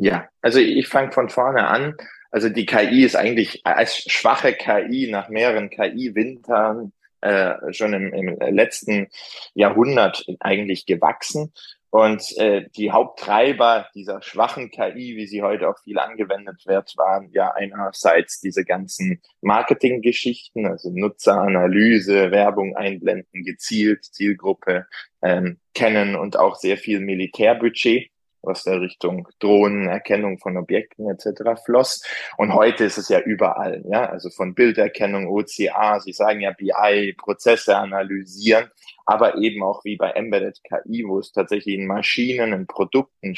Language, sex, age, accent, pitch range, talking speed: German, male, 20-39, German, 95-115 Hz, 135 wpm